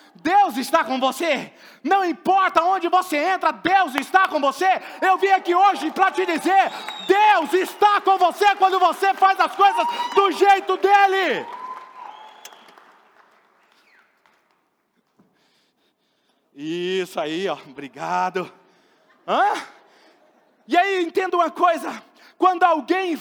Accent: Brazilian